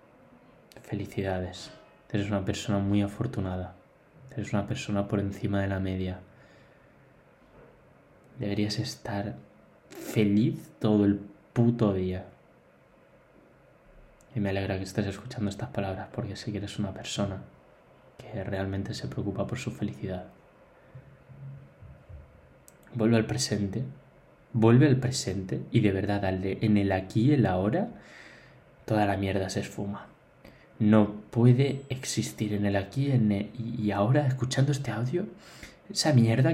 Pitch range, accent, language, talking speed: 100-120 Hz, Spanish, Spanish, 125 wpm